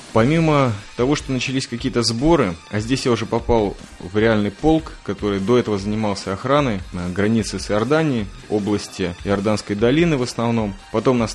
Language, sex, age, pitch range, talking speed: Russian, male, 20-39, 100-120 Hz, 160 wpm